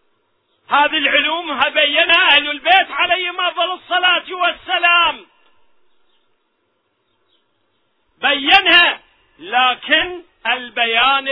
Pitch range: 250-355 Hz